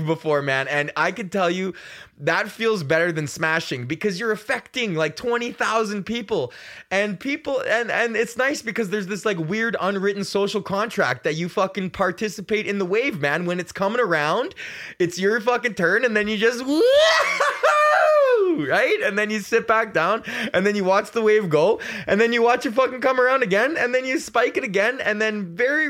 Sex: male